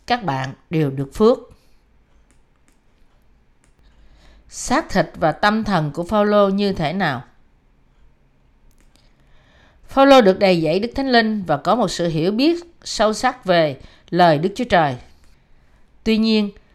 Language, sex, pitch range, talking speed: Vietnamese, female, 160-225 Hz, 135 wpm